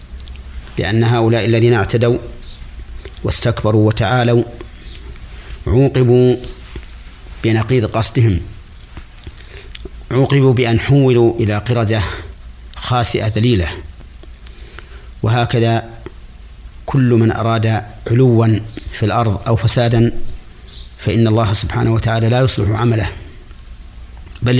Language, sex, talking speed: Arabic, male, 80 wpm